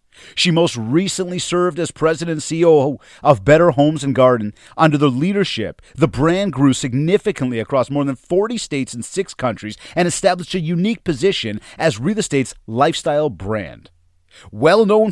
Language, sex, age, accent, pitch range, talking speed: English, male, 30-49, American, 135-185 Hz, 155 wpm